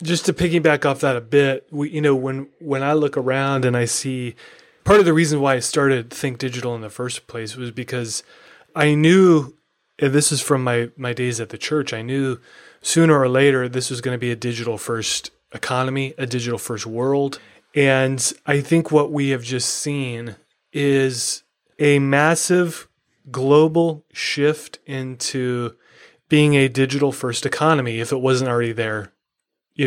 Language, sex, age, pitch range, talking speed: English, male, 30-49, 125-155 Hz, 175 wpm